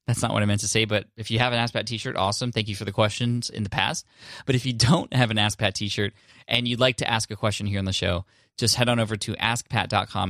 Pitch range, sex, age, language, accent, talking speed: 95-120 Hz, male, 20-39, English, American, 290 wpm